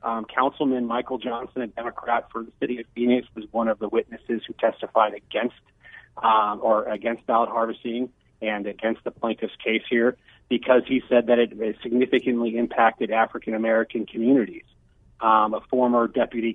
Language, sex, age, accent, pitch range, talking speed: English, male, 30-49, American, 110-120 Hz, 155 wpm